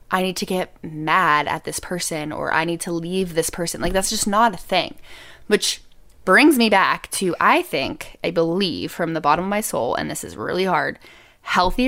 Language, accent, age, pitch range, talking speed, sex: English, American, 20-39, 170-235 Hz, 210 wpm, female